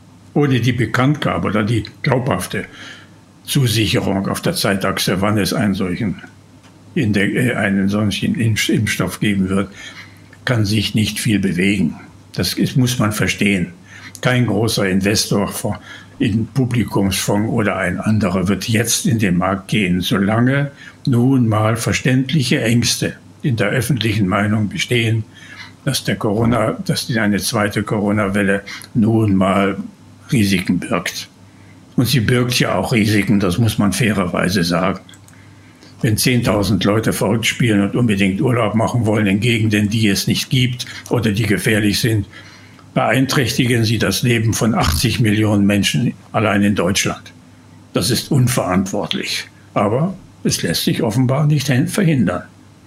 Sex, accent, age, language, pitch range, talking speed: male, German, 60-79, German, 100-125 Hz, 135 wpm